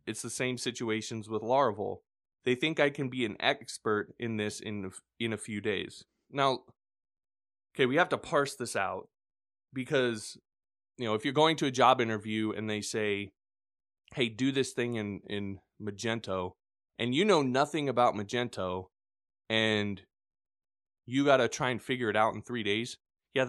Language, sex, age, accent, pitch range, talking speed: English, male, 20-39, American, 105-130 Hz, 170 wpm